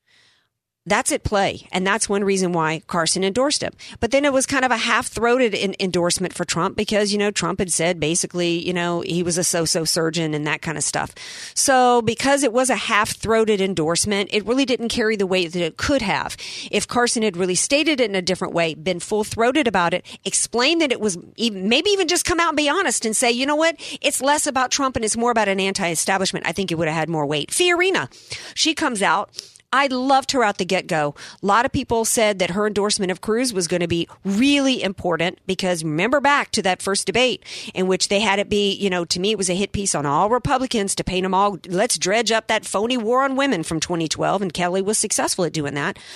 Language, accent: English, American